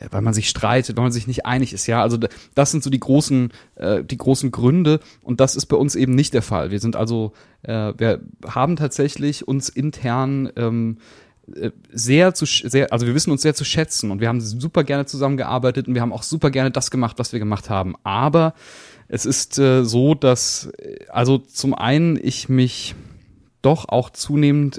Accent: German